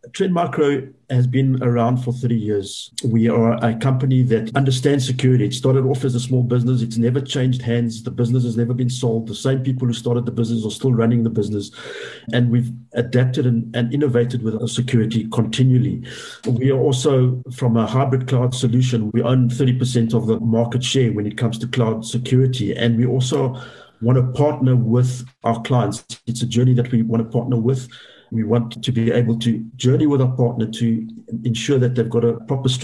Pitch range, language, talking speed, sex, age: 115-130 Hz, English, 200 wpm, male, 50-69